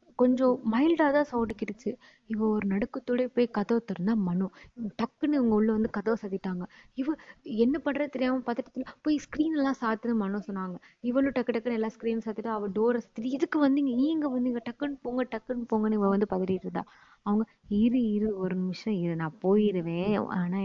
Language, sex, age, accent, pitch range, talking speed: Tamil, female, 20-39, native, 180-225 Hz, 165 wpm